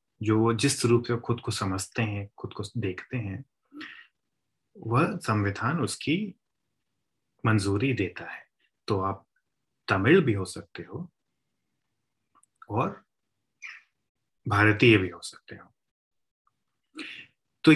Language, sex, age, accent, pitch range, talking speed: Hindi, male, 30-49, native, 100-145 Hz, 120 wpm